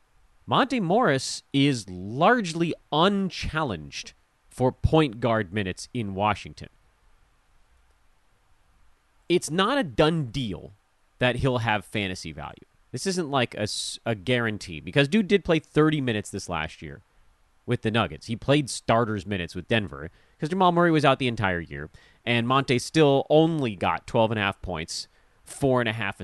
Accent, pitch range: American, 95-150 Hz